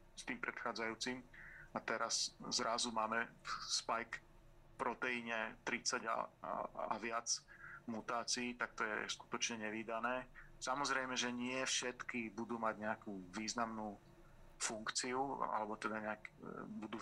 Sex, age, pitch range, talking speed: male, 40-59, 110-125 Hz, 115 wpm